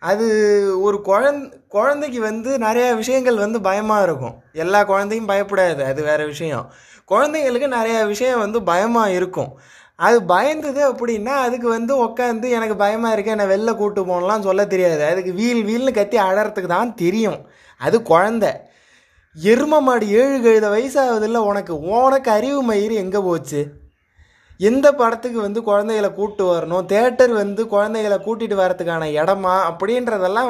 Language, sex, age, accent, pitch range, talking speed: Tamil, male, 20-39, native, 190-230 Hz, 140 wpm